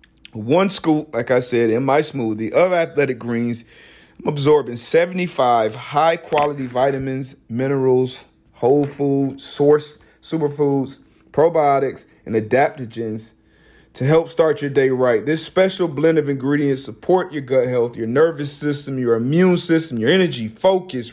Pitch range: 125-160 Hz